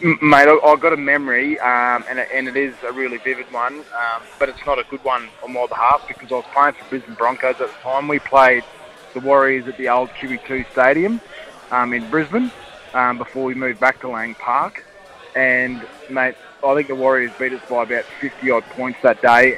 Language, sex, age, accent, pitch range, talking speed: English, male, 20-39, Australian, 125-140 Hz, 205 wpm